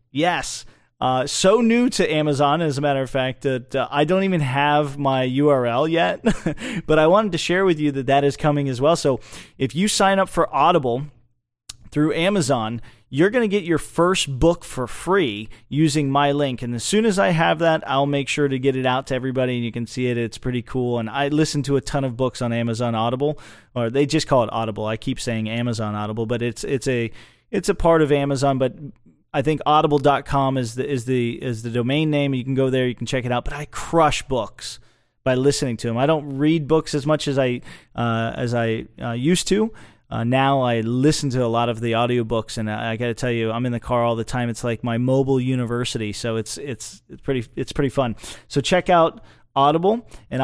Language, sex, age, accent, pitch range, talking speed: English, male, 30-49, American, 120-145 Hz, 230 wpm